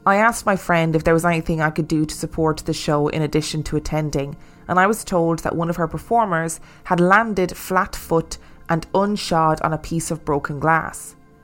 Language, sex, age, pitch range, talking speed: English, female, 20-39, 155-185 Hz, 210 wpm